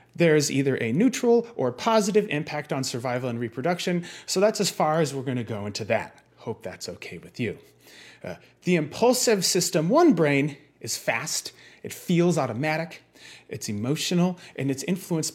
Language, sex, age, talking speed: English, male, 30-49, 165 wpm